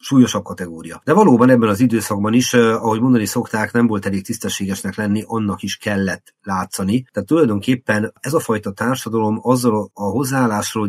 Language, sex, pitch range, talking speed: Hungarian, male, 100-115 Hz, 160 wpm